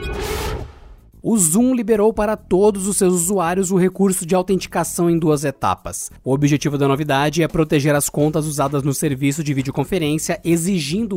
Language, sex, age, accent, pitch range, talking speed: Portuguese, male, 20-39, Brazilian, 135-180 Hz, 155 wpm